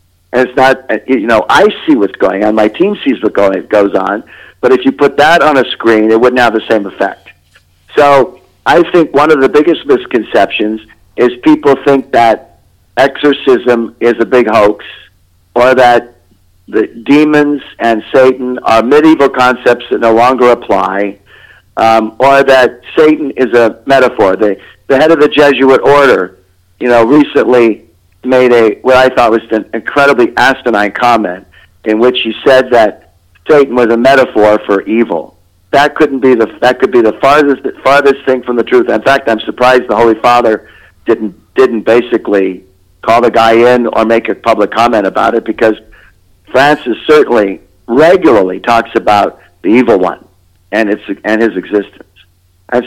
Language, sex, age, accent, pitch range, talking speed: English, male, 50-69, American, 105-135 Hz, 170 wpm